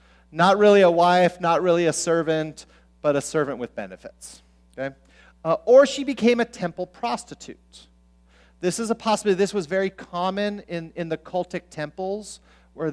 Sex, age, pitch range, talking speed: male, 40-59, 130-210 Hz, 165 wpm